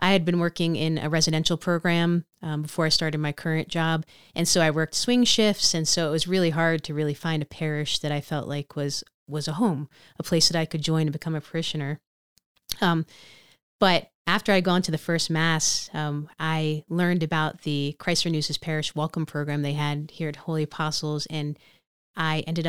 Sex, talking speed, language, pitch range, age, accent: female, 205 wpm, English, 155-175 Hz, 30-49, American